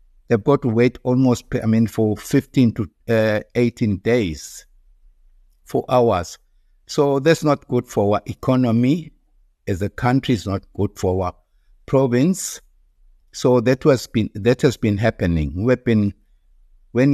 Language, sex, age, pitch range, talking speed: English, male, 60-79, 95-120 Hz, 145 wpm